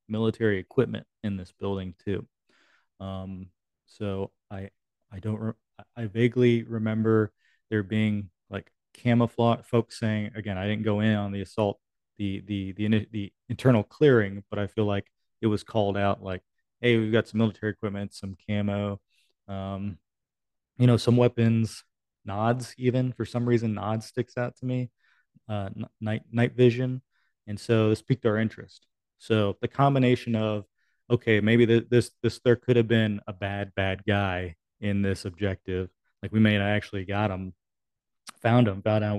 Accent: American